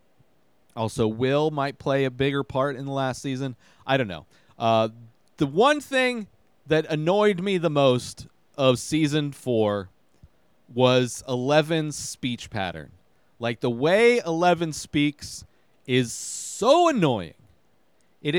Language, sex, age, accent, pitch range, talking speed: English, male, 30-49, American, 130-185 Hz, 125 wpm